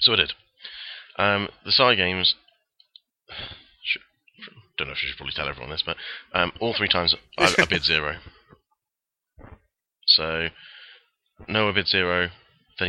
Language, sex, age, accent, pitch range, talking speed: English, male, 20-39, British, 75-90 Hz, 135 wpm